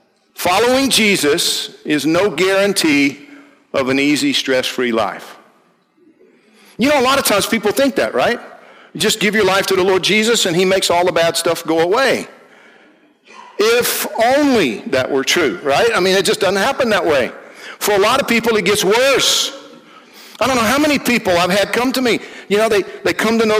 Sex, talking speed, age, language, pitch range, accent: male, 195 wpm, 50-69, English, 145-220 Hz, American